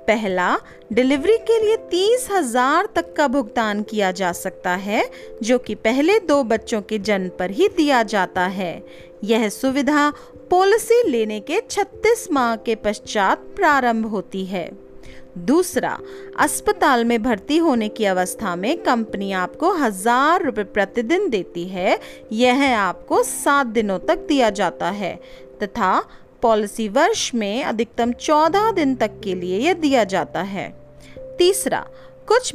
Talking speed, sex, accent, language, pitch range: 140 wpm, female, native, Hindi, 190-320 Hz